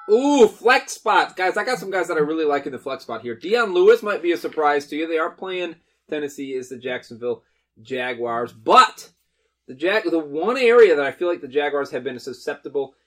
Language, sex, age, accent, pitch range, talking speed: English, male, 20-39, American, 135-170 Hz, 215 wpm